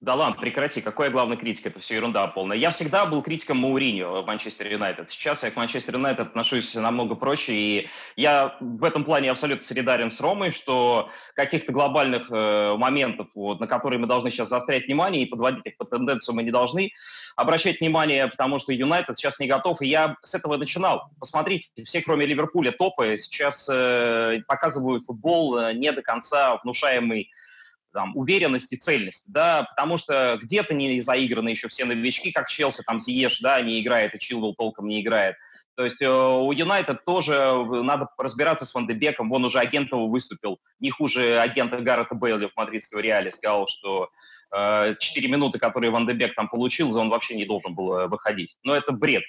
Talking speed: 180 wpm